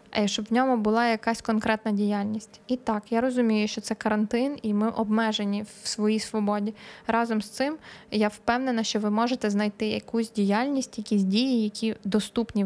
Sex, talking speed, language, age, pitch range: female, 170 wpm, Ukrainian, 10-29, 210-240 Hz